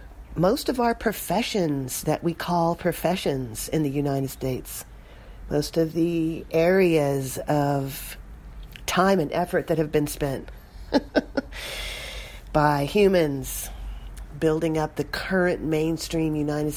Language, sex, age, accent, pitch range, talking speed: English, female, 40-59, American, 135-175 Hz, 115 wpm